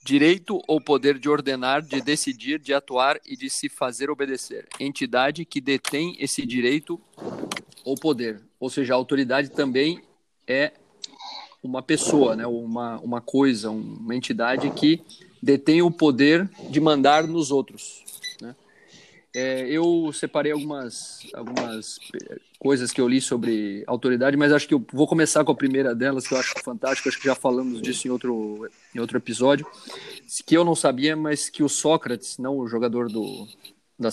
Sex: male